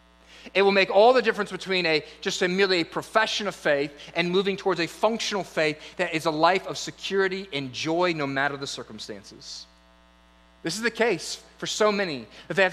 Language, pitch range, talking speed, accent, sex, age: English, 160-225 Hz, 205 wpm, American, male, 30-49